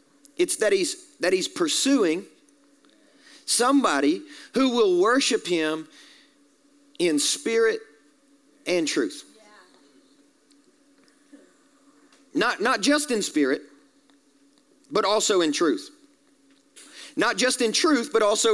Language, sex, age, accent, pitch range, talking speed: English, male, 40-59, American, 190-305 Hz, 95 wpm